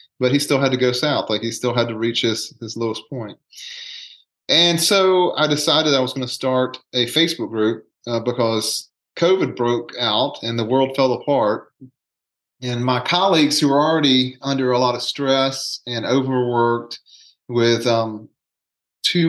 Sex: male